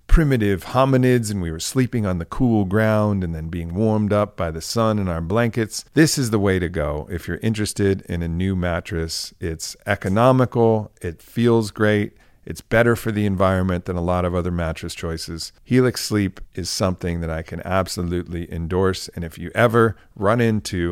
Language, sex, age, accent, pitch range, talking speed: English, male, 50-69, American, 85-110 Hz, 190 wpm